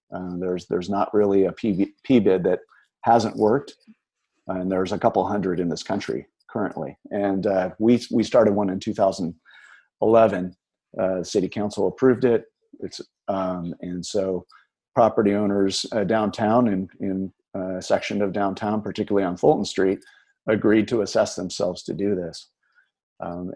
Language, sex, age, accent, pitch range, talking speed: English, male, 50-69, American, 95-110 Hz, 160 wpm